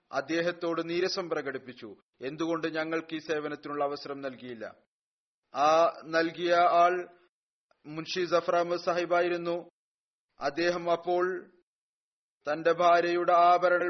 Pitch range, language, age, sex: 160-175 Hz, Malayalam, 30-49, male